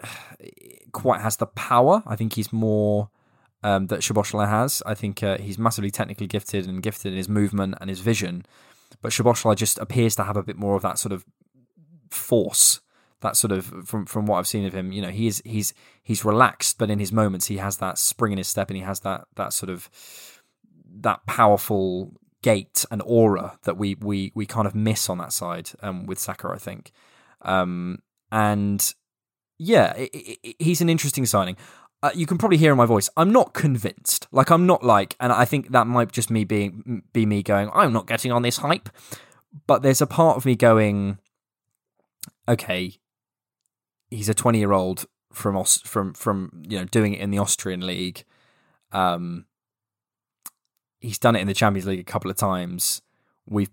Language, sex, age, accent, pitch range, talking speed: English, male, 20-39, British, 100-120 Hz, 190 wpm